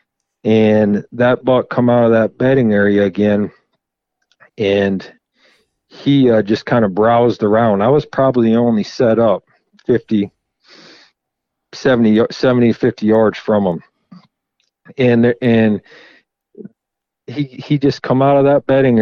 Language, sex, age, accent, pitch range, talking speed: English, male, 40-59, American, 105-125 Hz, 130 wpm